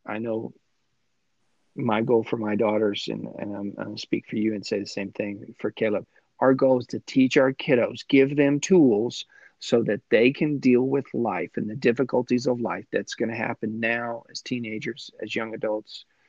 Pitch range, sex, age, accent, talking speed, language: 105-125 Hz, male, 40-59, American, 195 wpm, English